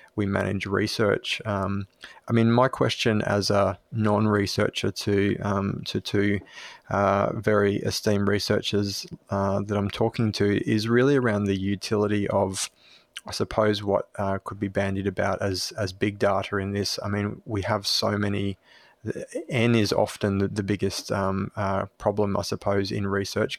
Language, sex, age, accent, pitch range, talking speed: English, male, 20-39, Australian, 100-105 Hz, 160 wpm